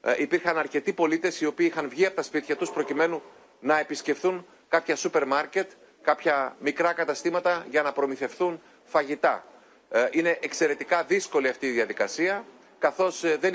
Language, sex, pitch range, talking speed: Greek, male, 140-175 Hz, 140 wpm